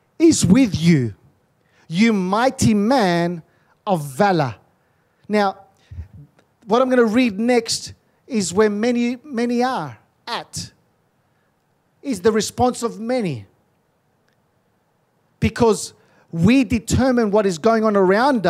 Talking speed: 110 wpm